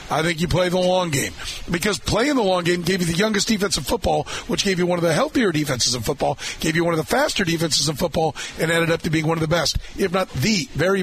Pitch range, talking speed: 155-195 Hz, 280 wpm